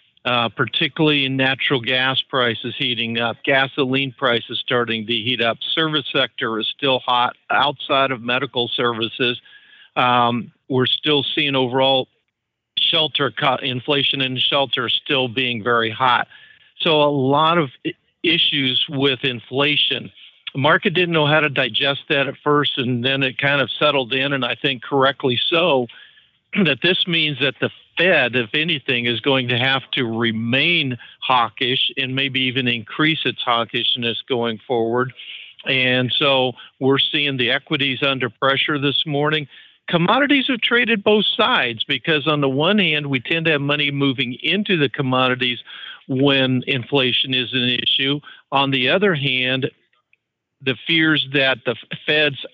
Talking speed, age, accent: 150 wpm, 50-69, American